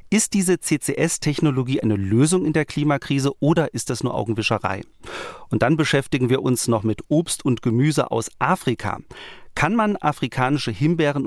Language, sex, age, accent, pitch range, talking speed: German, male, 40-59, German, 115-150 Hz, 155 wpm